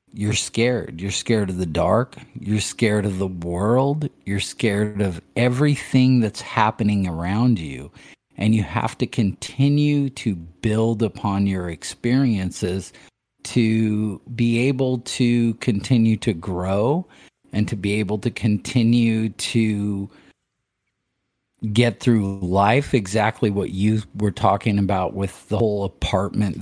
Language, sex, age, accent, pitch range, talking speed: English, male, 40-59, American, 100-115 Hz, 130 wpm